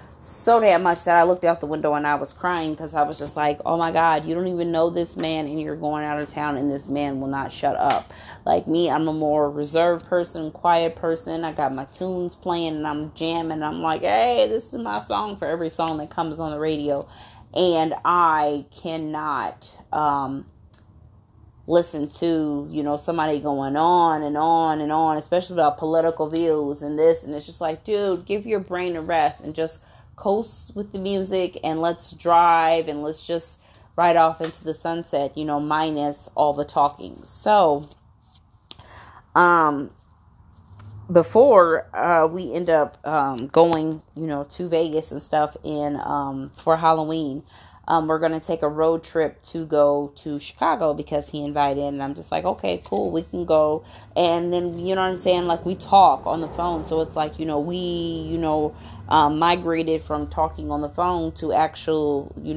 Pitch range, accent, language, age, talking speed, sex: 145-170 Hz, American, English, 30-49, 190 wpm, female